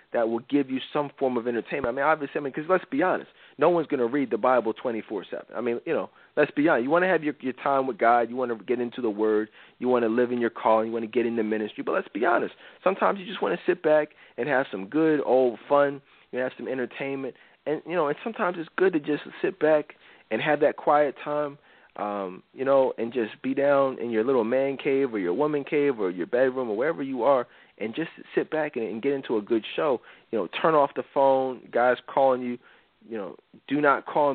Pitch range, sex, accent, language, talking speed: 120-150 Hz, male, American, English, 250 wpm